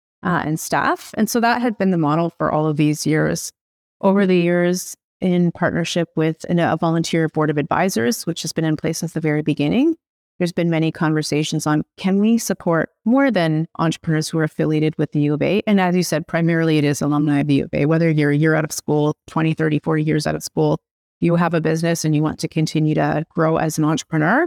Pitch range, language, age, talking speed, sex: 155-175 Hz, English, 30-49, 235 wpm, female